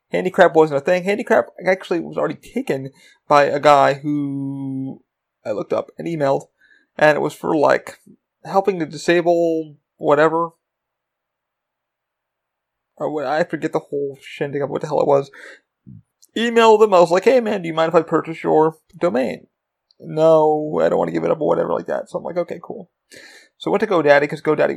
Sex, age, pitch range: male, 30-49, 145-180 Hz